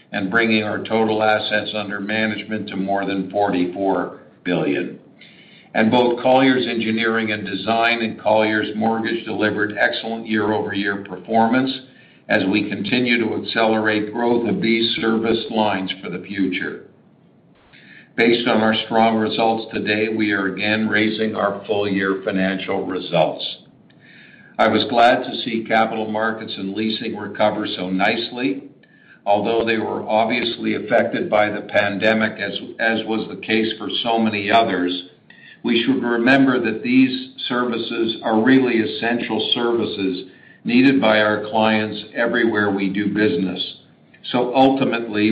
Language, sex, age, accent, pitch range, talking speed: English, male, 60-79, American, 105-115 Hz, 135 wpm